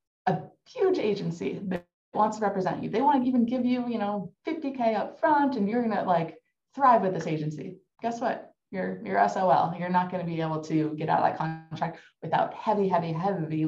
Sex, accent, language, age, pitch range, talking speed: female, American, English, 20-39, 150-185 Hz, 215 wpm